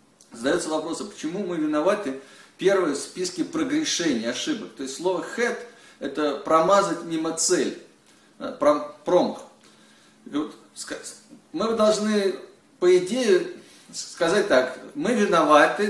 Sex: male